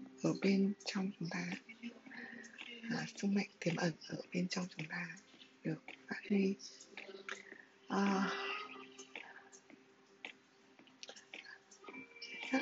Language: Vietnamese